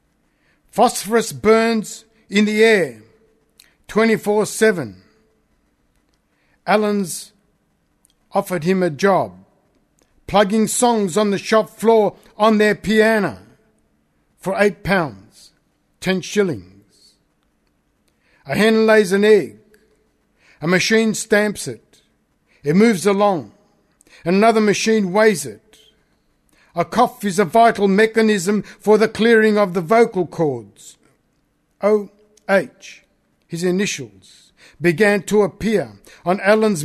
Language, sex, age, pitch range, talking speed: English, male, 60-79, 165-215 Hz, 105 wpm